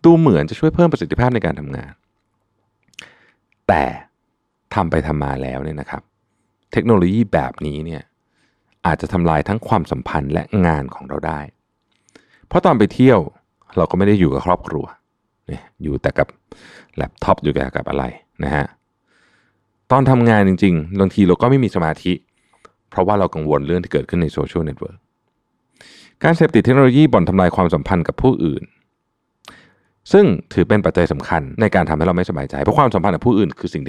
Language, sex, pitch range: Thai, male, 80-110 Hz